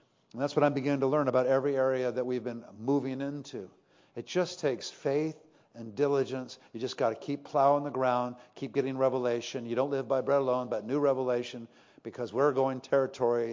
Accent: American